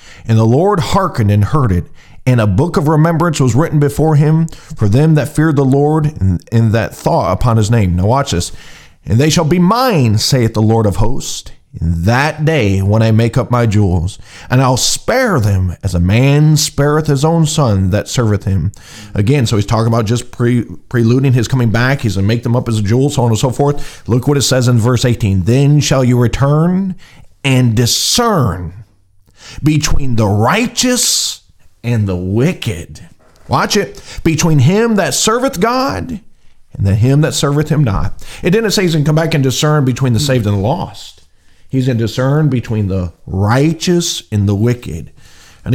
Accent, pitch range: American, 105-150 Hz